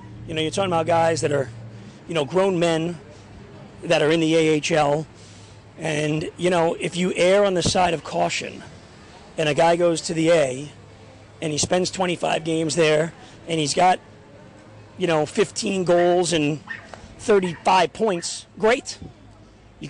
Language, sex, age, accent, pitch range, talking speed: English, male, 40-59, American, 145-180 Hz, 160 wpm